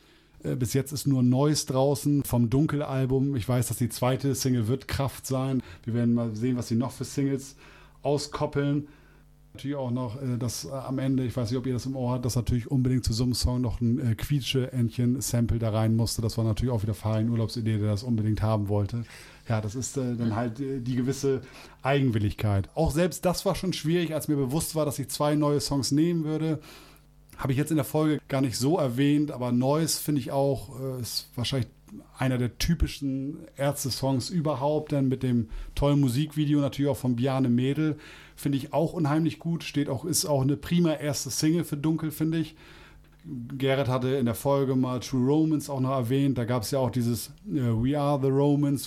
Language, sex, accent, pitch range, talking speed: German, male, German, 120-145 Hz, 200 wpm